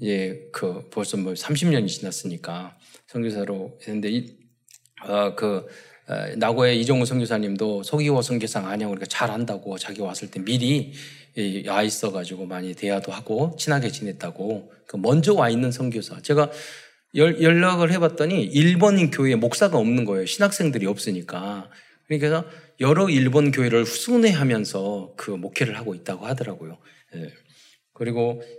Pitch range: 110-160 Hz